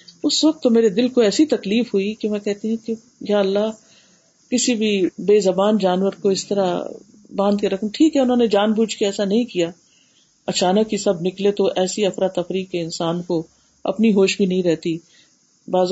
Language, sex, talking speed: Urdu, female, 200 wpm